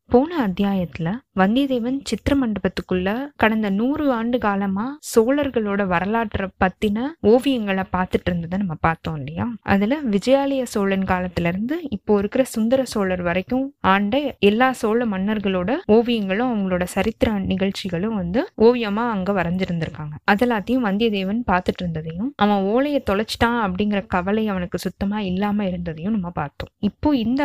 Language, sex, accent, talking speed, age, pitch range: Tamil, female, native, 120 wpm, 20-39, 190-245 Hz